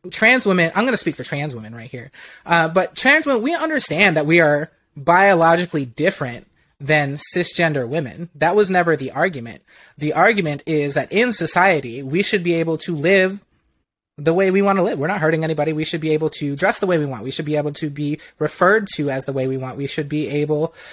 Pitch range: 140-175 Hz